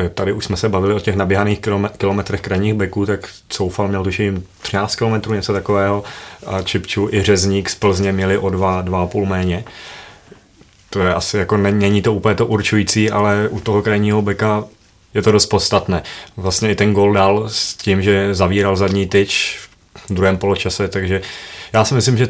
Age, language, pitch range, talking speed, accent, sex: 30-49, Czech, 95-105 Hz, 180 wpm, native, male